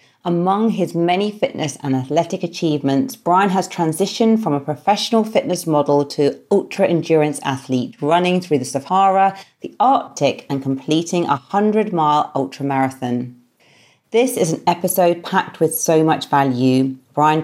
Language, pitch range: English, 140-180 Hz